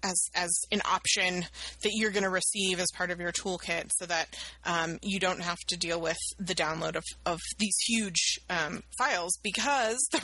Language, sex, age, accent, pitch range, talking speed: English, female, 30-49, American, 180-215 Hz, 195 wpm